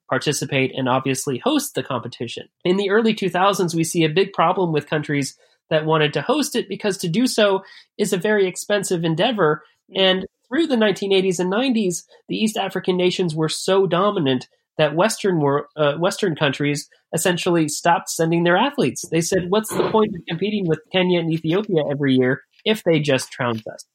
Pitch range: 145-195 Hz